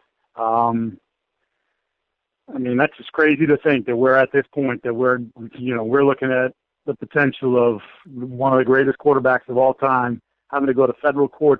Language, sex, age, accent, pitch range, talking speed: English, male, 40-59, American, 125-150 Hz, 190 wpm